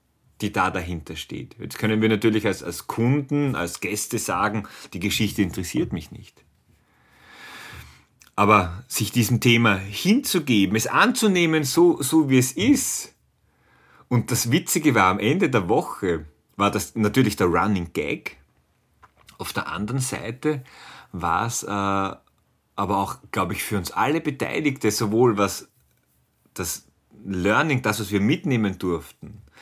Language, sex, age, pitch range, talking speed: German, male, 40-59, 100-140 Hz, 140 wpm